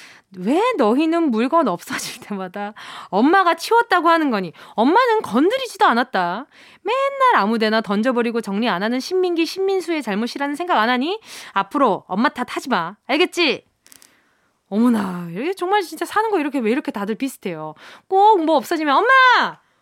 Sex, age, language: female, 20-39, Korean